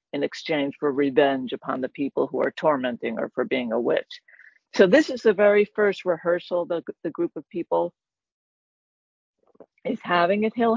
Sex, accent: female, American